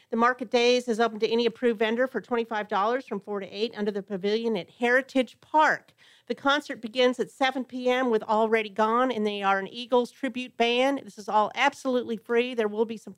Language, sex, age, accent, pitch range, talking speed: English, female, 40-59, American, 200-240 Hz, 210 wpm